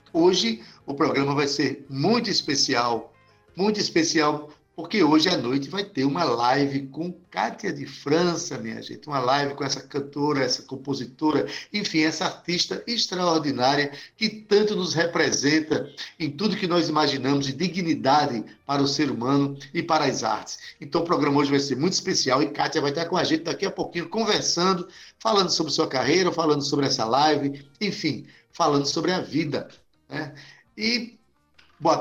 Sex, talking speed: male, 165 wpm